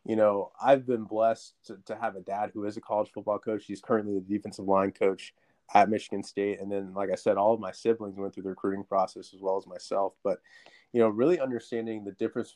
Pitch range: 100-120 Hz